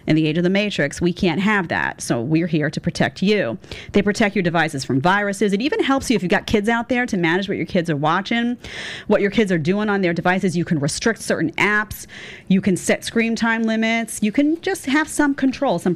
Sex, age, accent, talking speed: female, 40-59, American, 245 wpm